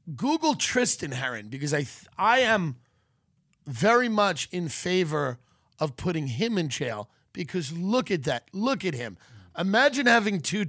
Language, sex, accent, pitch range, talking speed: English, male, American, 130-200 Hz, 145 wpm